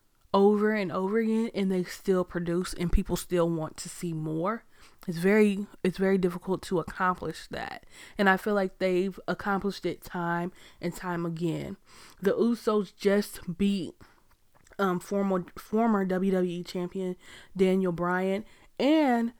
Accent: American